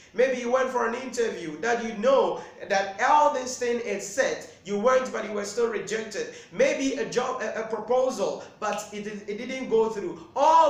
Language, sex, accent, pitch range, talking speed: English, male, Nigerian, 195-265 Hz, 190 wpm